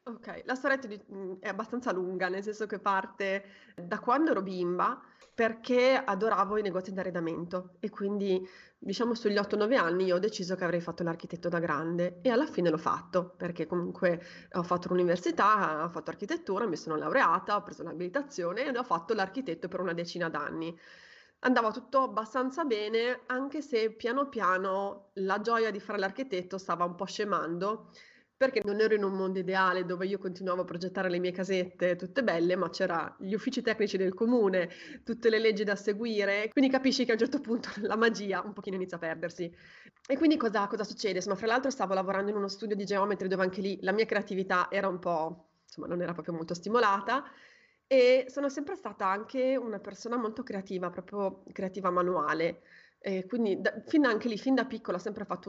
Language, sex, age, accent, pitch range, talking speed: Italian, female, 30-49, native, 180-225 Hz, 190 wpm